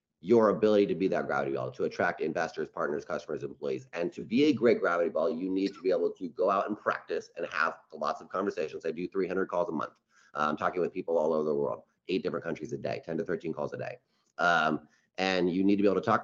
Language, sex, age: English, male, 30-49